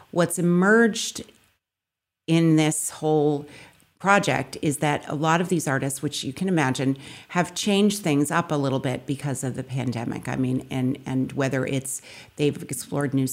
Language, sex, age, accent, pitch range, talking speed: English, female, 50-69, American, 135-160 Hz, 165 wpm